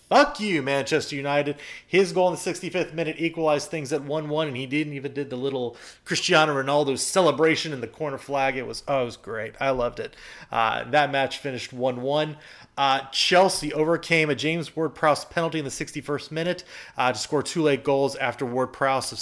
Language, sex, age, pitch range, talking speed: English, male, 30-49, 125-155 Hz, 195 wpm